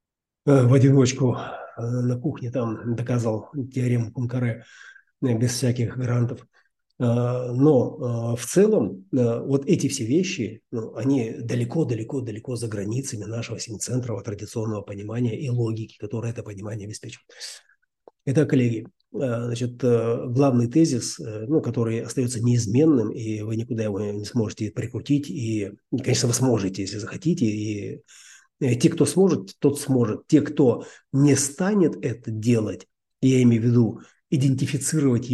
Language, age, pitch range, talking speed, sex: Russian, 30-49, 115-140 Hz, 120 wpm, male